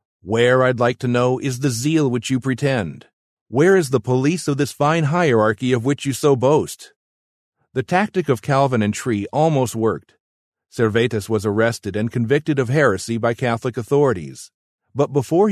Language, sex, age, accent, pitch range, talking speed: English, male, 50-69, American, 115-150 Hz, 170 wpm